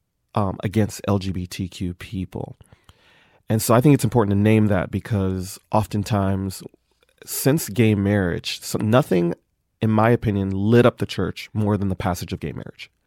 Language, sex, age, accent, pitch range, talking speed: English, male, 30-49, American, 95-115 Hz, 155 wpm